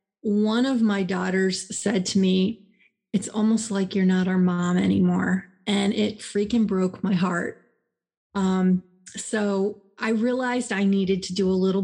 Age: 30-49